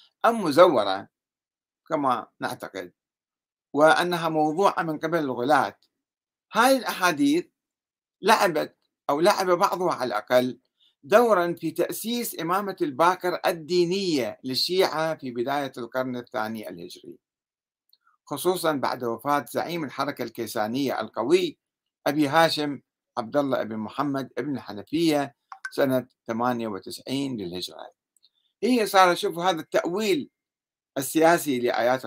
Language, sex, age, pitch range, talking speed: Arabic, male, 60-79, 125-185 Hz, 100 wpm